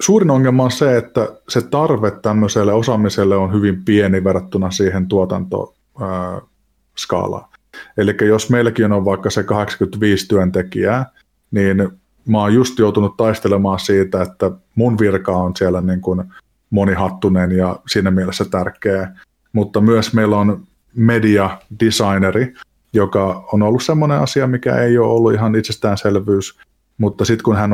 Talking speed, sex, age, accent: 135 wpm, male, 30-49, native